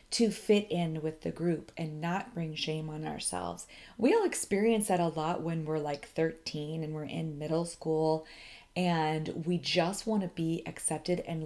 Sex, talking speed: female, 185 wpm